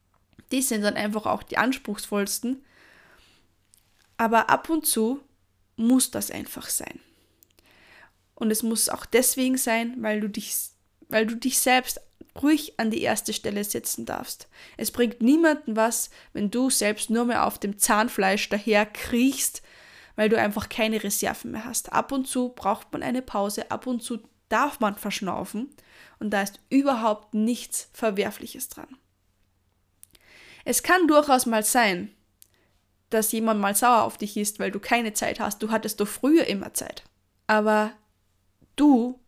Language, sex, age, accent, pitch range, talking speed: German, female, 10-29, German, 210-250 Hz, 155 wpm